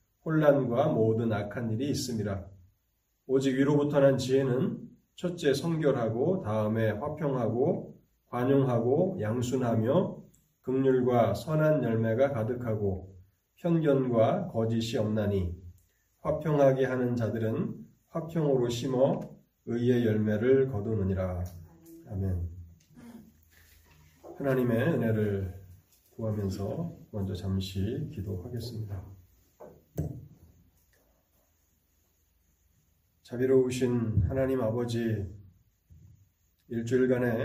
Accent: native